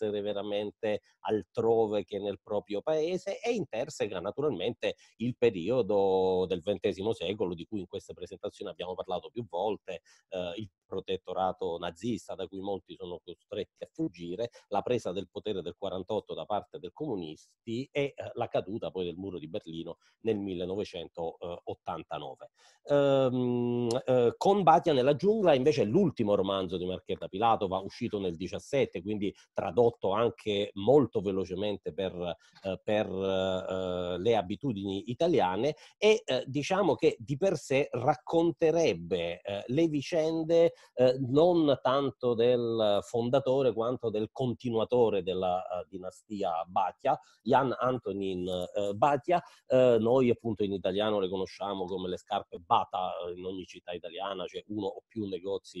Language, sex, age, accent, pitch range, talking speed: Italian, male, 40-59, native, 95-150 Hz, 145 wpm